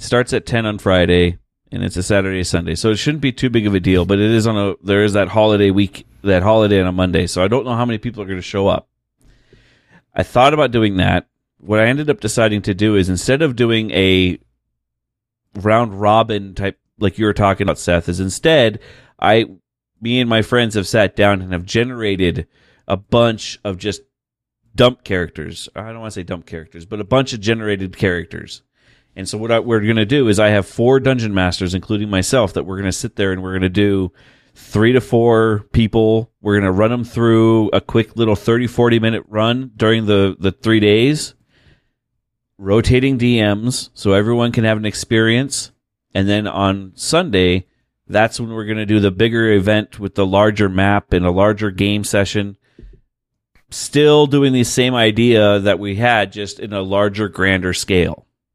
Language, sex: English, male